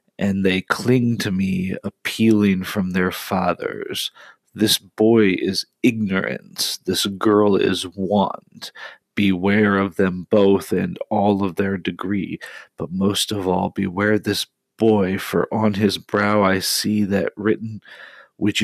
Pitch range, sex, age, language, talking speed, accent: 100-115 Hz, male, 40-59, English, 135 wpm, American